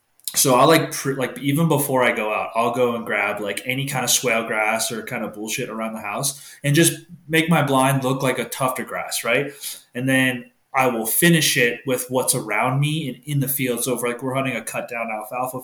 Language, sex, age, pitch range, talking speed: English, male, 20-39, 115-135 Hz, 230 wpm